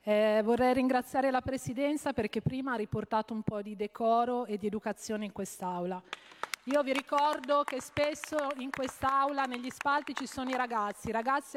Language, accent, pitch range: Italian, native, 210-275 Hz